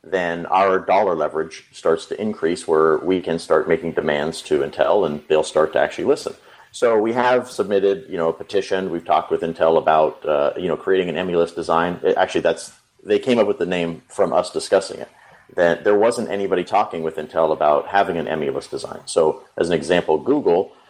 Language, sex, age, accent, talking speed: English, male, 40-59, American, 205 wpm